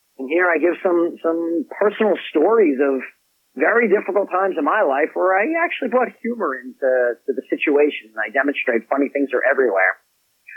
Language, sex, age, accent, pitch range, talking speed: English, male, 40-59, American, 135-200 Hz, 180 wpm